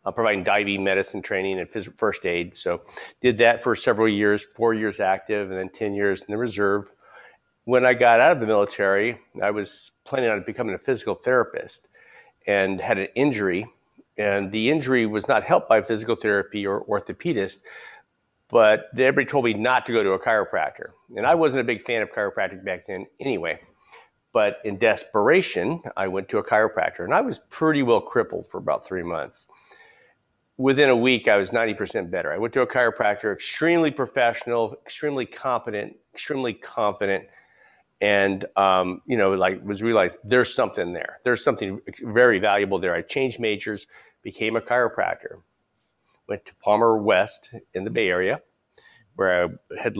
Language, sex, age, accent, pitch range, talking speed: English, male, 50-69, American, 100-125 Hz, 175 wpm